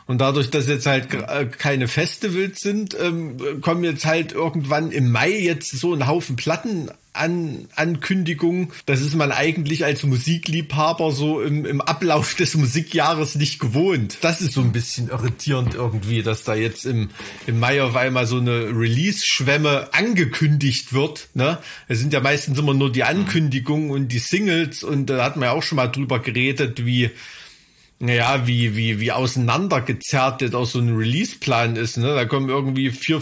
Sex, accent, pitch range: male, German, 130-165 Hz